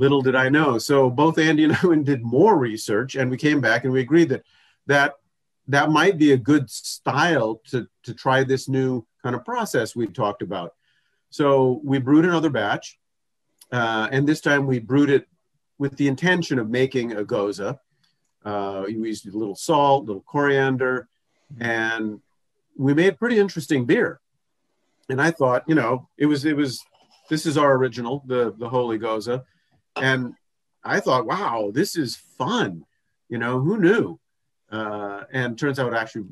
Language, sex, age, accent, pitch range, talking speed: English, male, 50-69, American, 115-145 Hz, 175 wpm